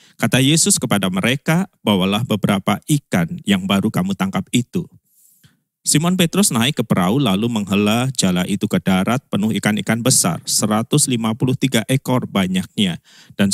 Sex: male